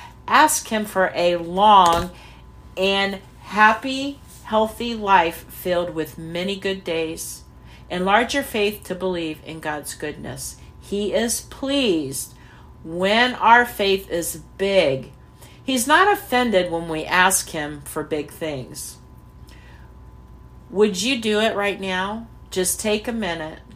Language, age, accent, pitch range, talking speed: English, 50-69, American, 155-205 Hz, 125 wpm